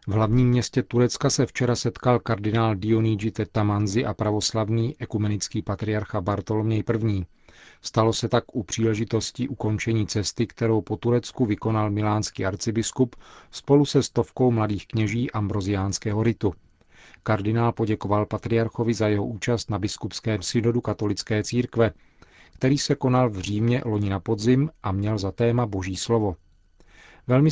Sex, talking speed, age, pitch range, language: male, 135 wpm, 40-59, 105-115 Hz, Czech